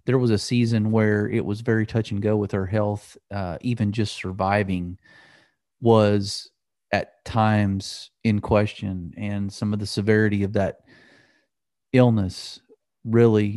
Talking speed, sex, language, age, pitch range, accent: 140 wpm, male, English, 40-59, 95-110 Hz, American